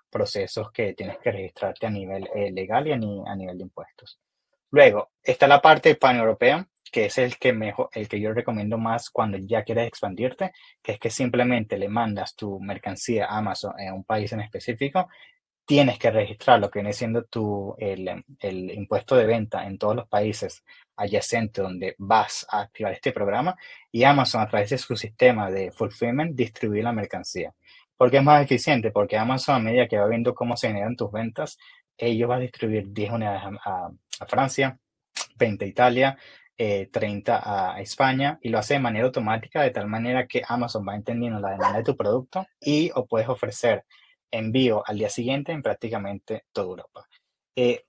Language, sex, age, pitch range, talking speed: English, male, 20-39, 105-125 Hz, 185 wpm